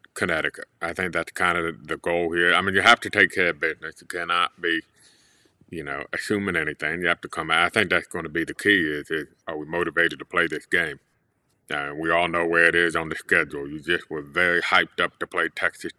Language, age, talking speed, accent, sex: English, 30-49, 250 wpm, American, male